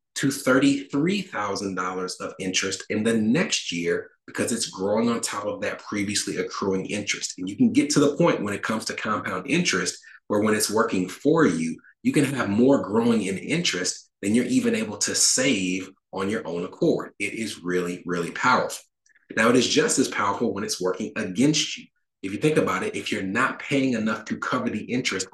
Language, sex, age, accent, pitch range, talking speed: English, male, 30-49, American, 95-150 Hz, 200 wpm